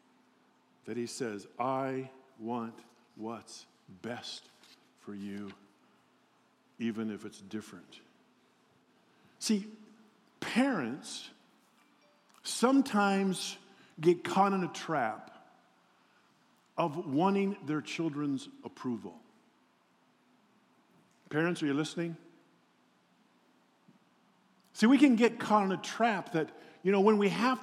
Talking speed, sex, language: 95 wpm, male, English